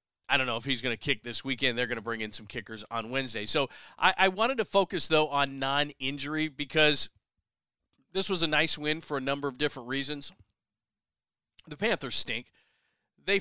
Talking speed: 195 wpm